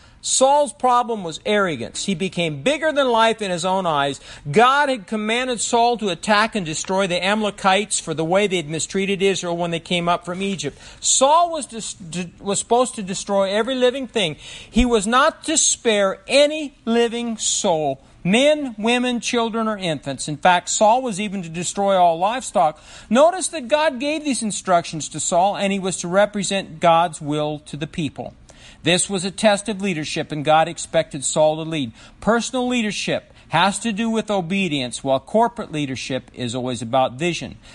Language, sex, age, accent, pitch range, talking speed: English, male, 50-69, American, 170-235 Hz, 175 wpm